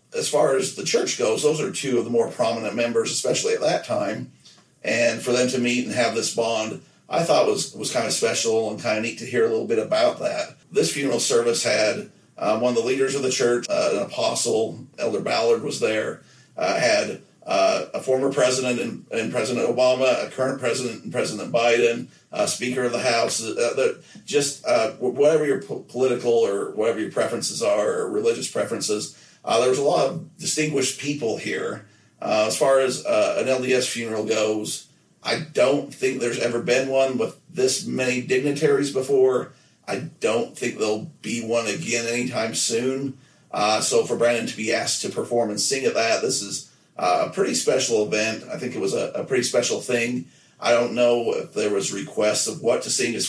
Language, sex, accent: English, male, American